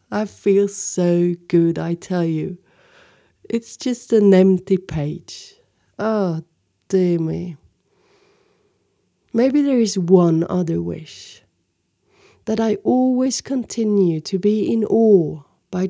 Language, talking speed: English, 115 wpm